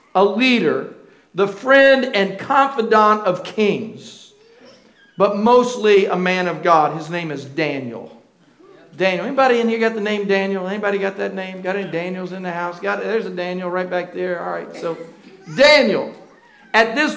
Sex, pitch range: male, 190-255 Hz